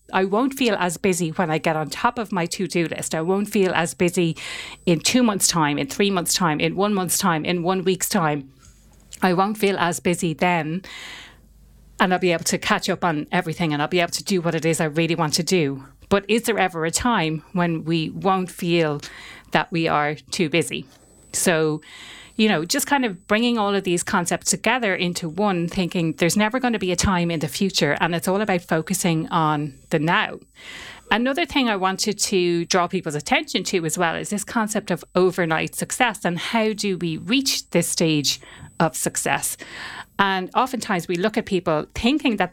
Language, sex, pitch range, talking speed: English, female, 165-195 Hz, 205 wpm